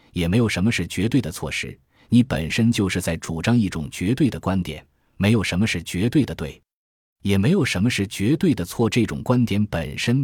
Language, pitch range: Chinese, 85-115 Hz